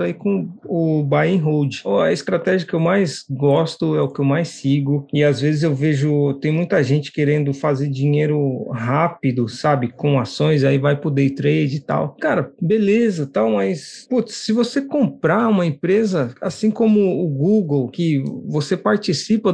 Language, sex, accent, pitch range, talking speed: Portuguese, male, Brazilian, 140-190 Hz, 180 wpm